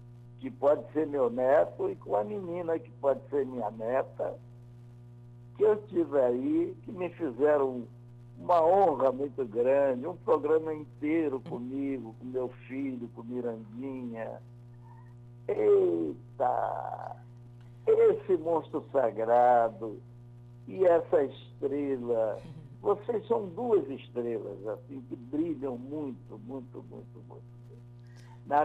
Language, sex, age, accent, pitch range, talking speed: Portuguese, male, 60-79, Brazilian, 120-150 Hz, 110 wpm